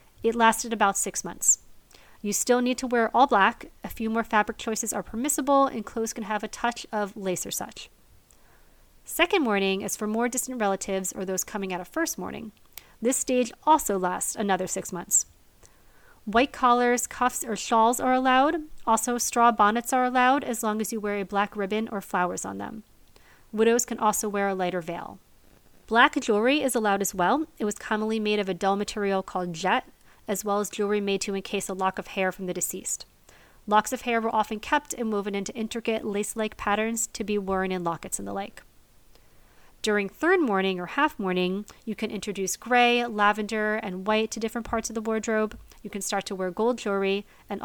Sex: female